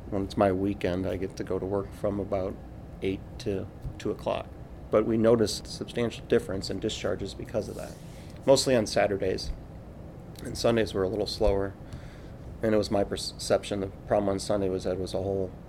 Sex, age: male, 30-49